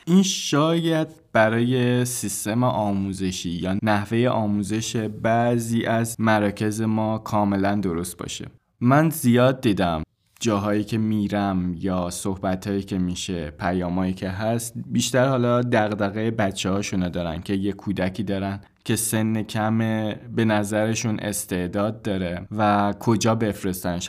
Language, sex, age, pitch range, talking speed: Persian, male, 20-39, 95-115 Hz, 120 wpm